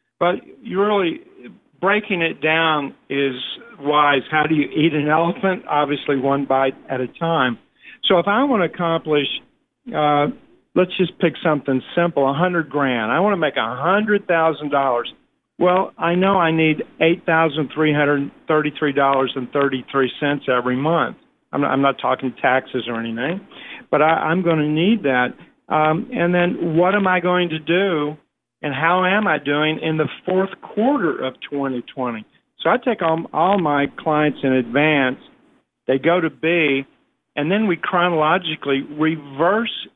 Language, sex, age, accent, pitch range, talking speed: English, male, 50-69, American, 140-180 Hz, 150 wpm